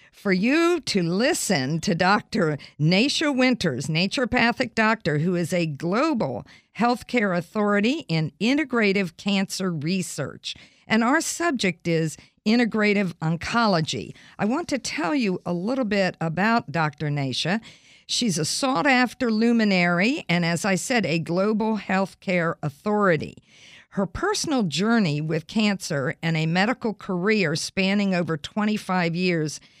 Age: 50-69